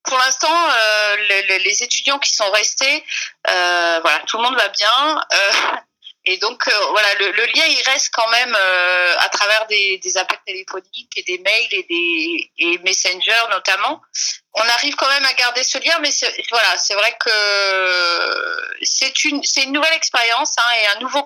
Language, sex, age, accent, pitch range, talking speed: French, female, 30-49, French, 200-290 Hz, 190 wpm